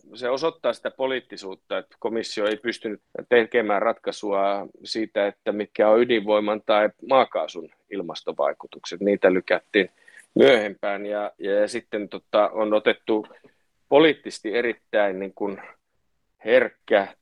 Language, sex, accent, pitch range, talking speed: Finnish, male, native, 100-125 Hz, 110 wpm